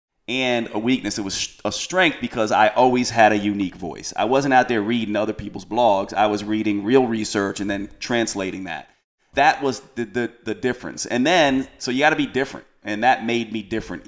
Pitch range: 105-125 Hz